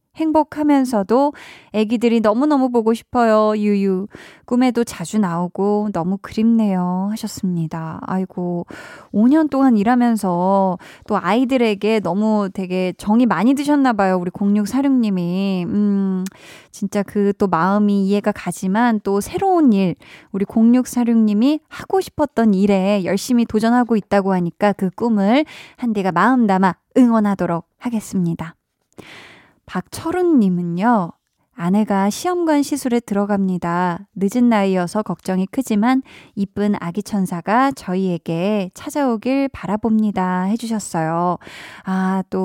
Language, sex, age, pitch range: Korean, female, 20-39, 185-240 Hz